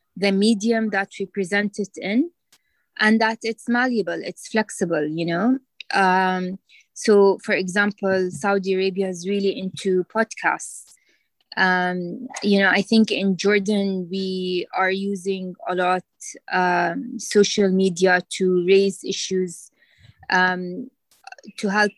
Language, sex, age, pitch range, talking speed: English, female, 20-39, 185-220 Hz, 125 wpm